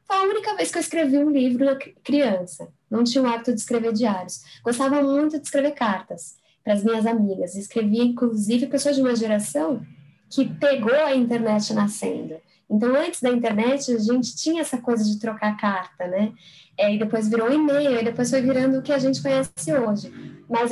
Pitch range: 215-275 Hz